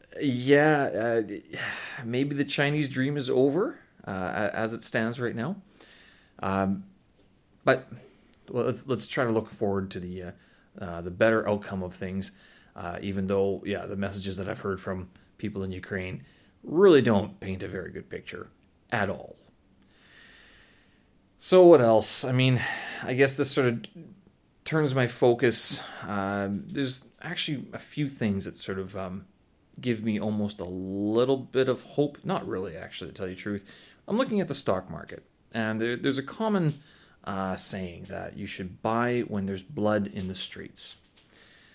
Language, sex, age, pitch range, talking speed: English, male, 30-49, 100-140 Hz, 165 wpm